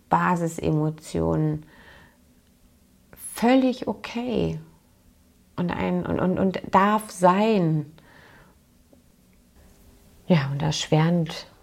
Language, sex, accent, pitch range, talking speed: German, female, German, 145-175 Hz, 65 wpm